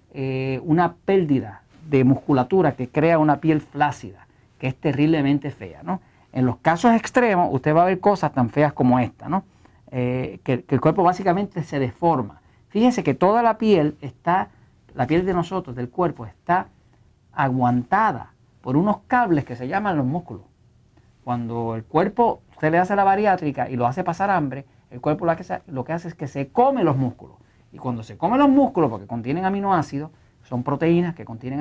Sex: male